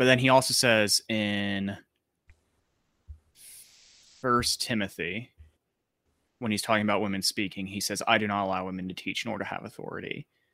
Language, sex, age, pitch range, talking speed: English, male, 20-39, 100-140 Hz, 155 wpm